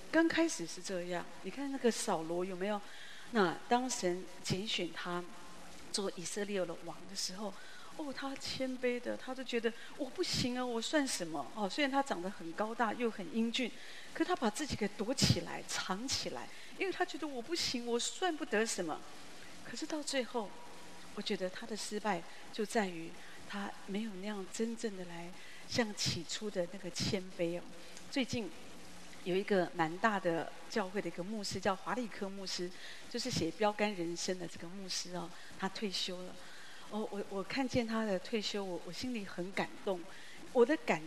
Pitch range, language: 180-235 Hz, Chinese